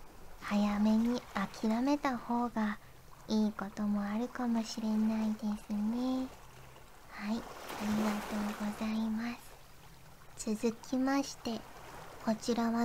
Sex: male